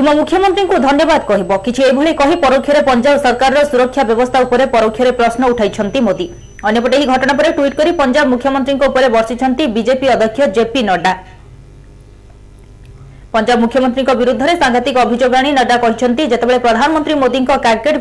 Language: Hindi